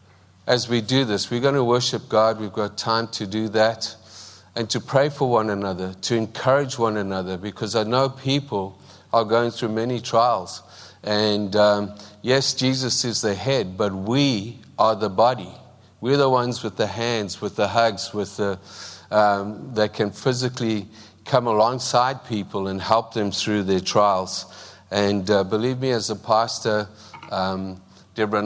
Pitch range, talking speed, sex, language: 105-125 Hz, 165 wpm, male, English